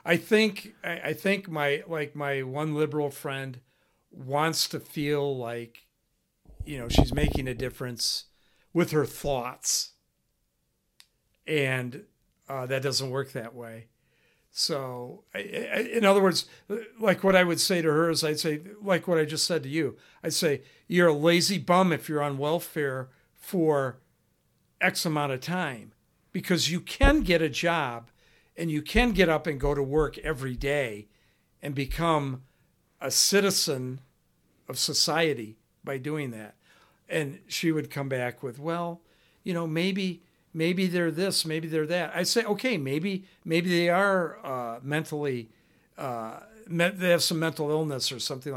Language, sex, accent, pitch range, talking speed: English, male, American, 135-175 Hz, 155 wpm